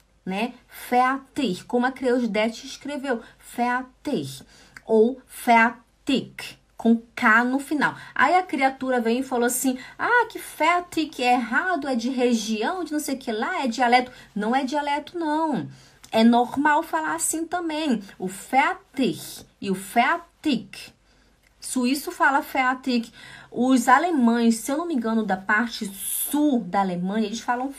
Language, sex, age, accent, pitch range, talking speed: Portuguese, female, 20-39, Brazilian, 210-275 Hz, 145 wpm